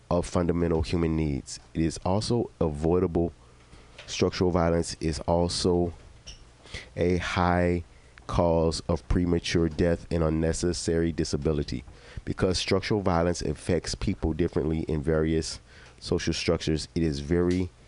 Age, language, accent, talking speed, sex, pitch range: 30-49, English, American, 115 wpm, male, 70-85 Hz